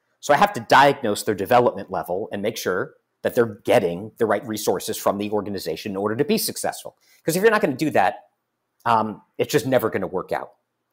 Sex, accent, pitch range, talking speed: male, American, 100-135 Hz, 225 wpm